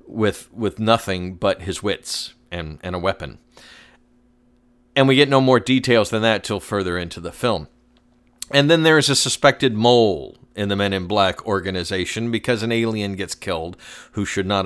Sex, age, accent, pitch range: male, 40-59, American, 100-130 Hz